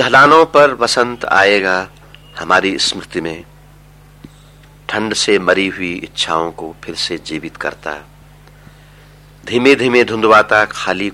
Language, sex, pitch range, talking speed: Hindi, male, 90-150 Hz, 115 wpm